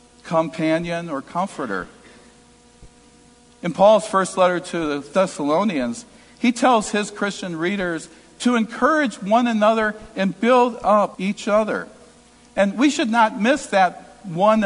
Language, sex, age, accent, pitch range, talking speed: English, male, 50-69, American, 180-250 Hz, 125 wpm